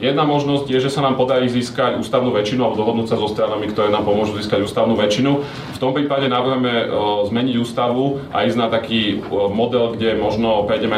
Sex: male